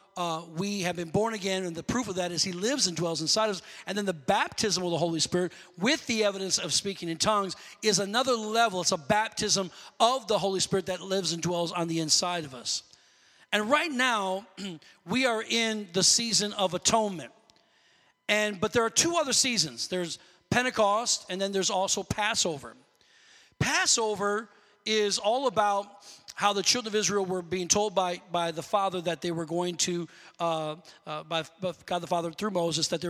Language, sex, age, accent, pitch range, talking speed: English, male, 40-59, American, 175-215 Hz, 200 wpm